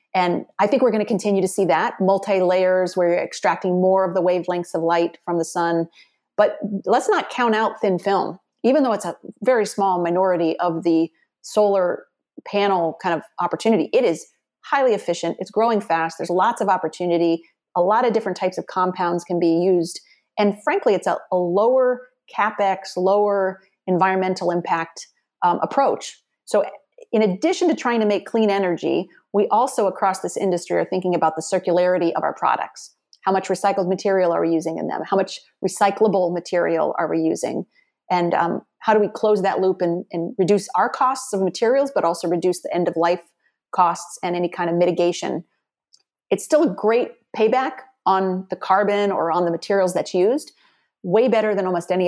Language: English